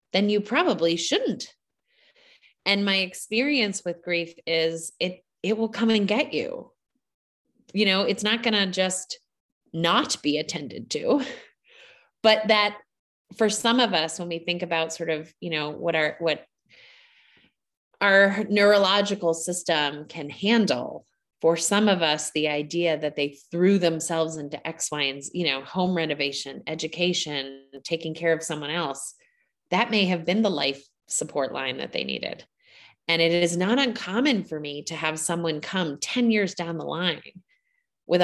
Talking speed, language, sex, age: 160 wpm, English, female, 30-49